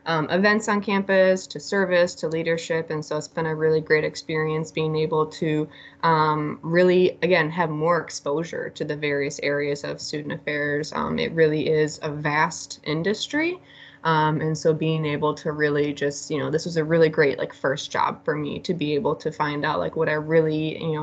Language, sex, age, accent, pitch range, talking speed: English, female, 20-39, American, 155-180 Hz, 200 wpm